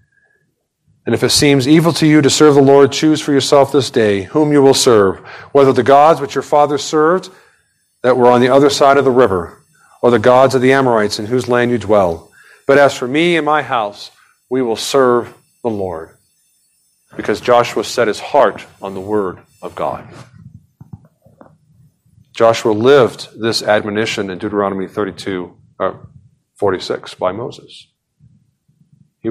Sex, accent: male, American